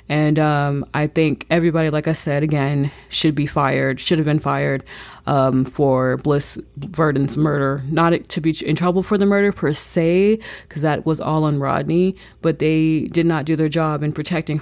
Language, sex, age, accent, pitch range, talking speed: English, female, 20-39, American, 145-165 Hz, 190 wpm